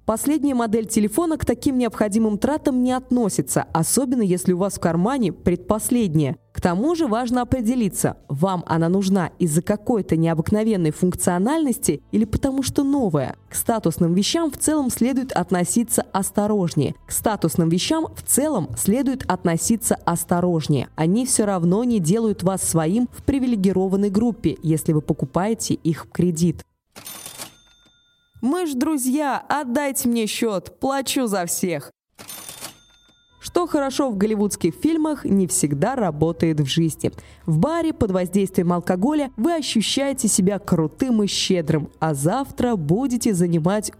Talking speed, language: 135 wpm, Russian